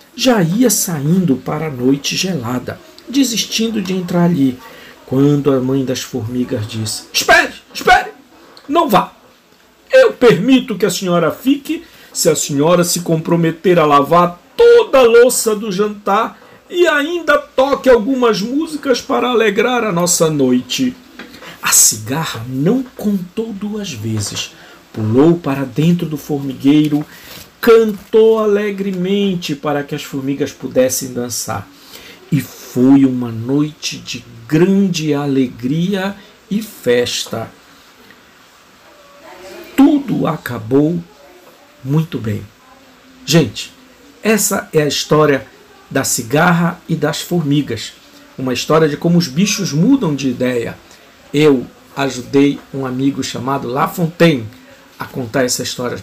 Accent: Brazilian